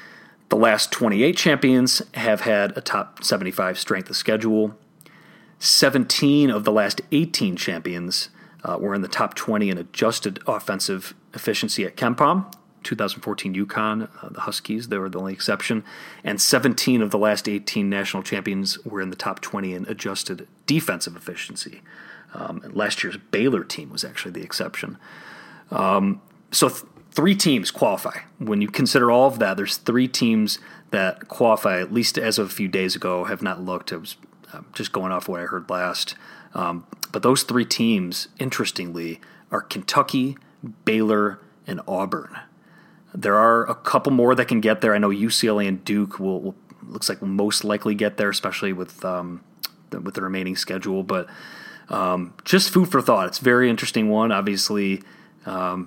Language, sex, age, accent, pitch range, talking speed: English, male, 30-49, American, 95-125 Hz, 170 wpm